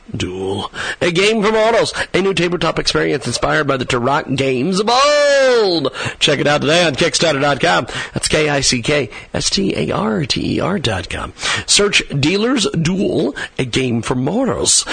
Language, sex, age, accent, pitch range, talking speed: English, male, 50-69, American, 145-190 Hz, 125 wpm